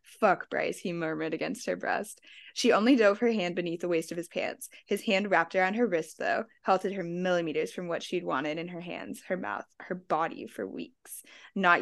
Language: English